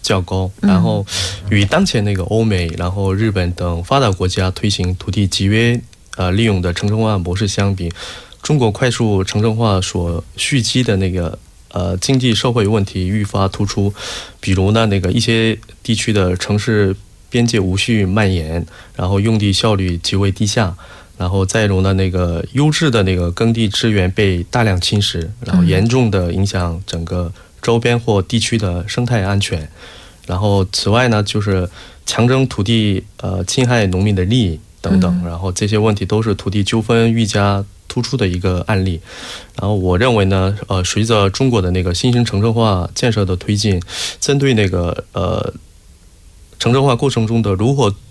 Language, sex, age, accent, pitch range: Korean, male, 20-39, Chinese, 90-115 Hz